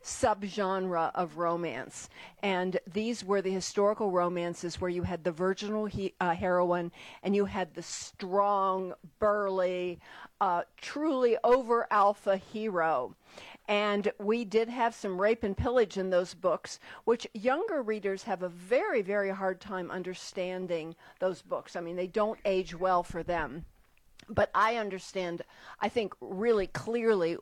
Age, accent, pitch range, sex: 50-69, American, 175-215 Hz, female